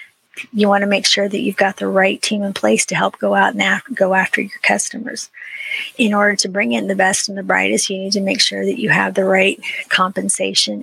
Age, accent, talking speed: 40-59, American, 240 wpm